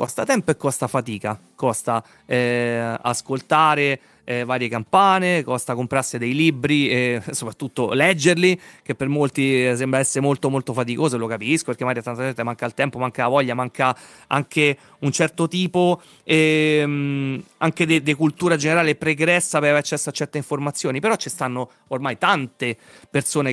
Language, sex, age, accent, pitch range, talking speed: Italian, male, 30-49, native, 130-160 Hz, 155 wpm